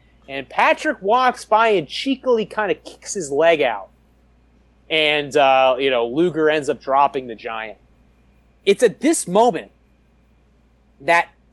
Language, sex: English, male